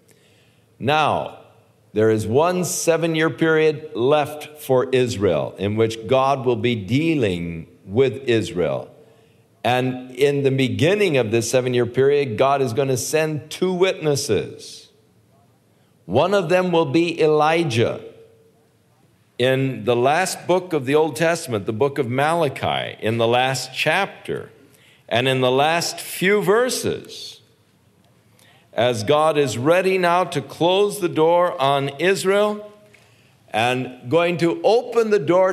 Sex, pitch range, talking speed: male, 130-180 Hz, 130 wpm